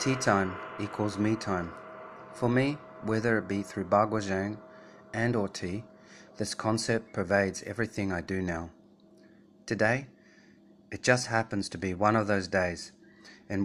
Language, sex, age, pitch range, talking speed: English, male, 30-49, 95-110 Hz, 150 wpm